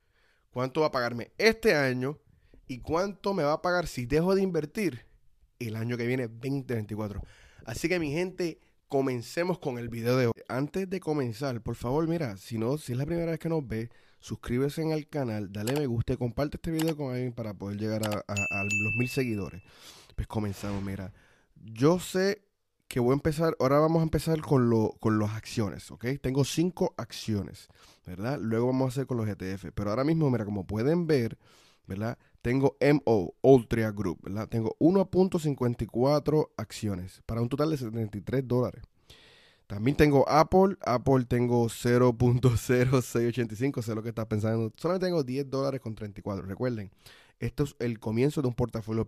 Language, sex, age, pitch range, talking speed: Spanish, male, 20-39, 110-145 Hz, 180 wpm